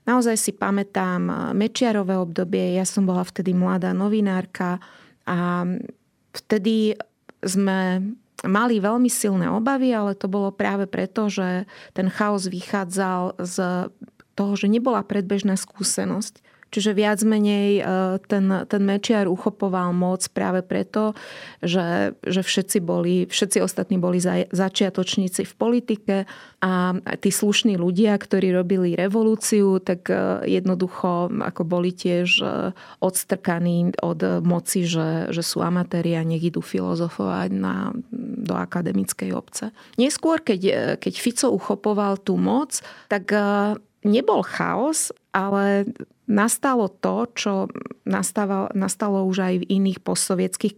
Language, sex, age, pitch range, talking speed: Slovak, female, 30-49, 185-215 Hz, 120 wpm